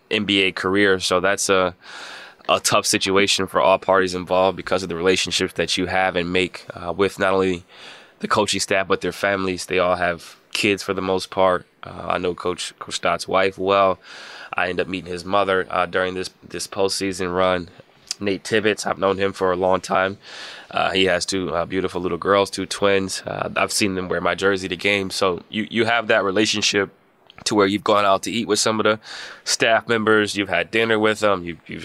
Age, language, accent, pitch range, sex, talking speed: 20-39, English, American, 90-100 Hz, male, 210 wpm